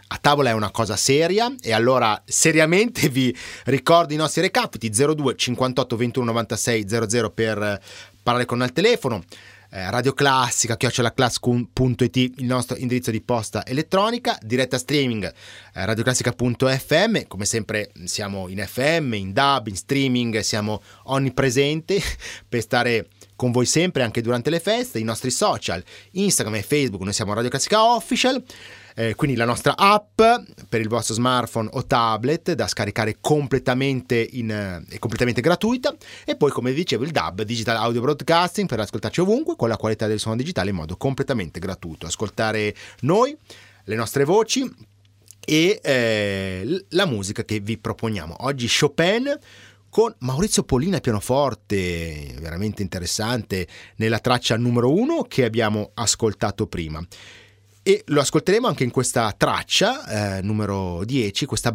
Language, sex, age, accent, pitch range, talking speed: Italian, male, 30-49, native, 105-150 Hz, 140 wpm